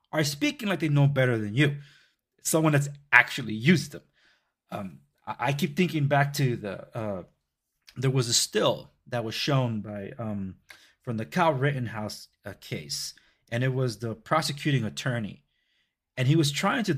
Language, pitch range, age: English, 125-155 Hz, 30-49